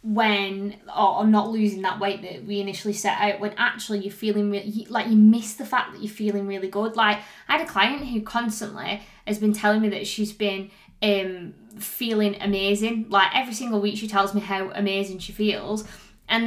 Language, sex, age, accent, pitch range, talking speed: English, female, 20-39, British, 205-225 Hz, 195 wpm